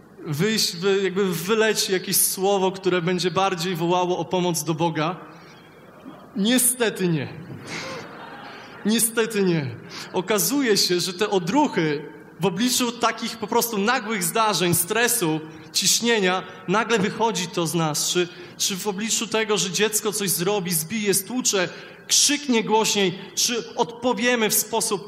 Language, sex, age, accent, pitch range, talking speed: Polish, male, 20-39, native, 160-210 Hz, 125 wpm